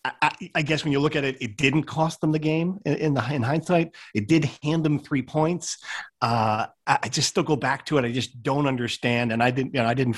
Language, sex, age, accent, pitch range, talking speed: English, male, 40-59, American, 120-155 Hz, 260 wpm